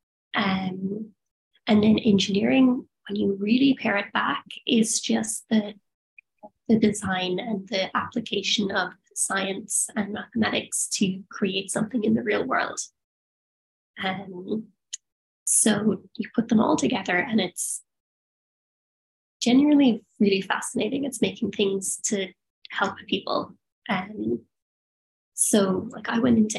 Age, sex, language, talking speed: 20-39, female, English, 125 wpm